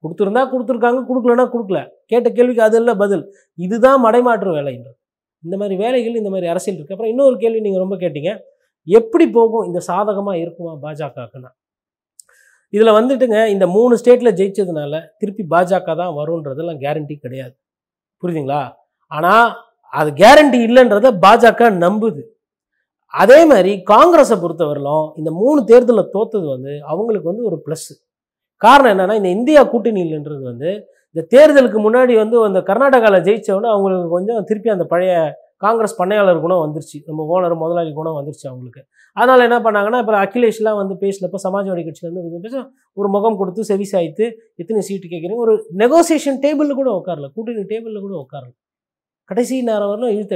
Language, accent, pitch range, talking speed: Tamil, native, 170-235 Hz, 145 wpm